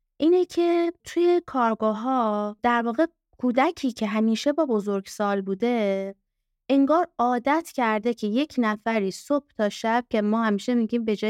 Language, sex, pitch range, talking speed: Persian, female, 210-290 Hz, 150 wpm